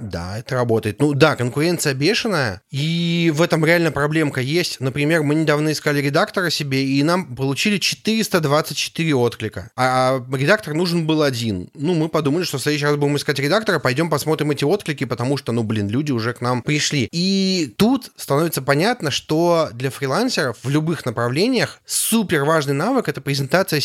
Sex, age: male, 20-39